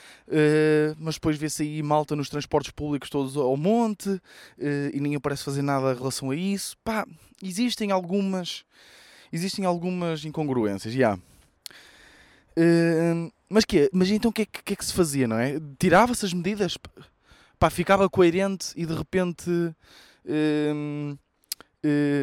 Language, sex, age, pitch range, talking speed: Portuguese, male, 20-39, 135-170 Hz, 145 wpm